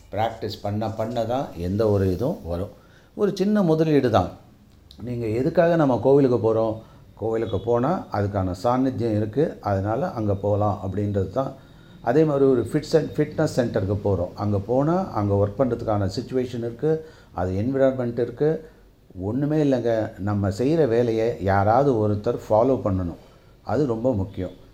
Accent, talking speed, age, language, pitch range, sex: native, 135 wpm, 40-59, Tamil, 100-135 Hz, male